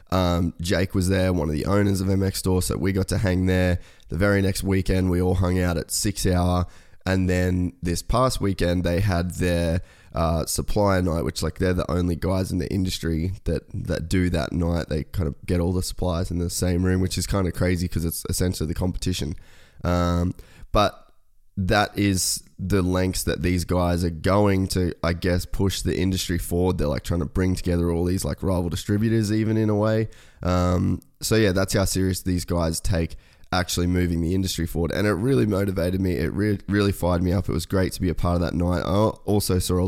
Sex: male